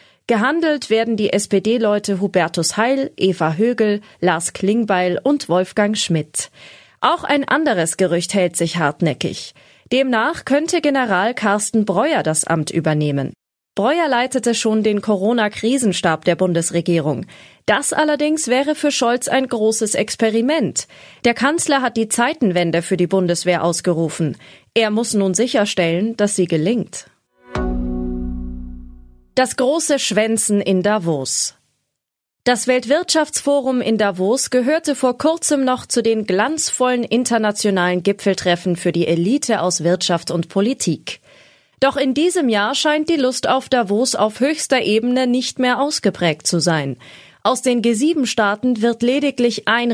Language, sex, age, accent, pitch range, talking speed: German, female, 30-49, German, 175-255 Hz, 130 wpm